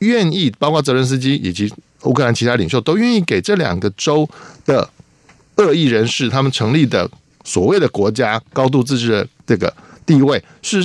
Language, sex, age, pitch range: Chinese, male, 50-69, 105-140 Hz